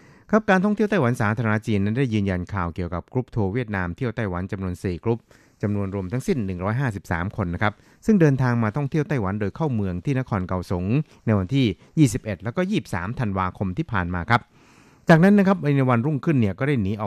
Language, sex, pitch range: Thai, male, 95-125 Hz